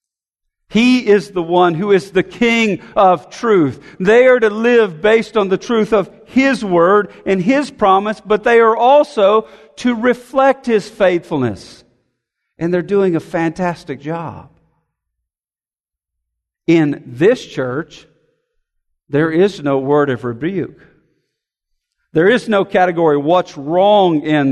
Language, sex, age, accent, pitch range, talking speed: English, male, 50-69, American, 160-220 Hz, 130 wpm